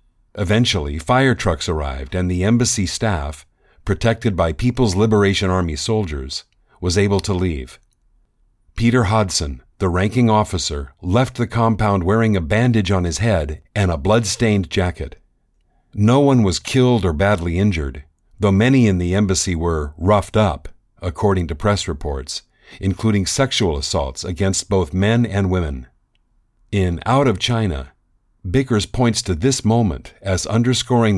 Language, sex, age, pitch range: English, male, 50-69, 90-115 Hz